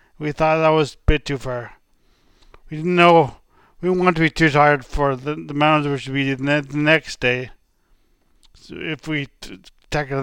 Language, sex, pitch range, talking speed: English, male, 140-160 Hz, 200 wpm